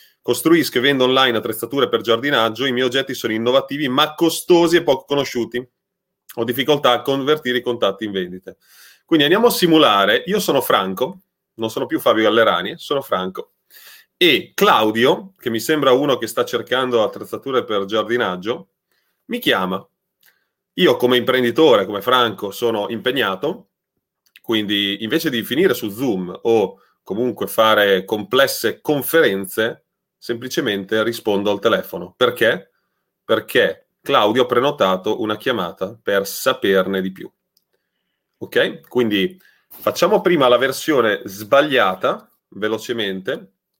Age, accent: 30-49, native